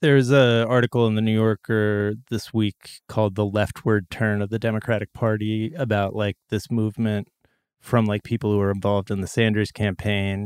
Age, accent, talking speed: 30-49, American, 180 wpm